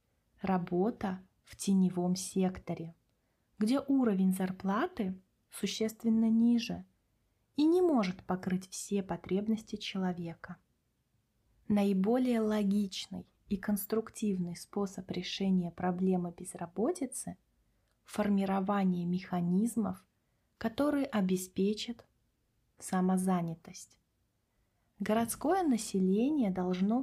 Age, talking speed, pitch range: 30-49, 70 wpm, 180-220 Hz